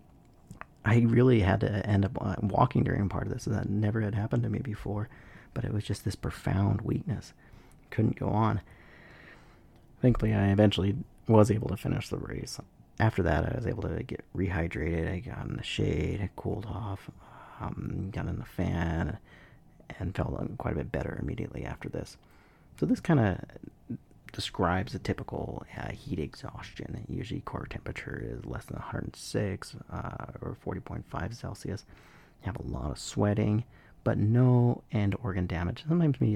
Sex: male